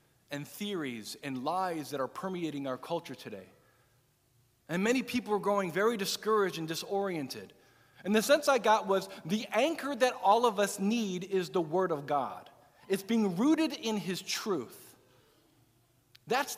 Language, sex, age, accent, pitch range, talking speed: English, male, 40-59, American, 140-215 Hz, 160 wpm